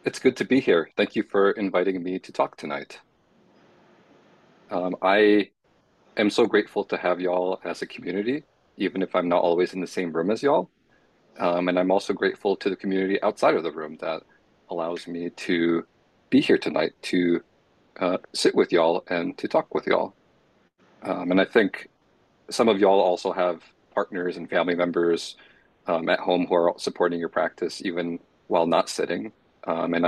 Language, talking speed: English, 180 wpm